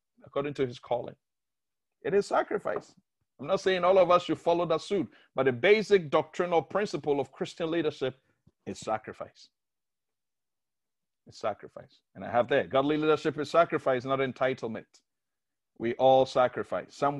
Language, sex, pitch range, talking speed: English, male, 135-190 Hz, 150 wpm